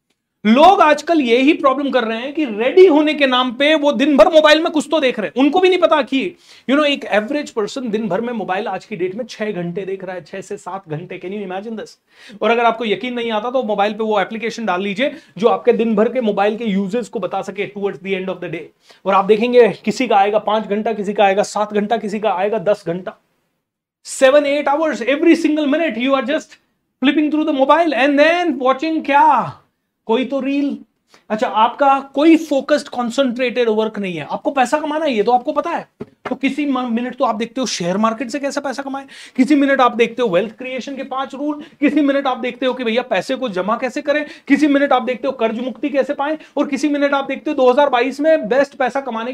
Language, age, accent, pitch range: Hindi, 30-49, native, 215-290 Hz